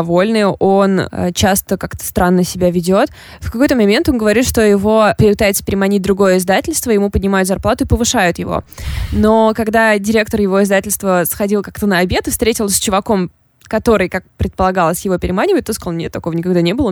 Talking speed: 170 wpm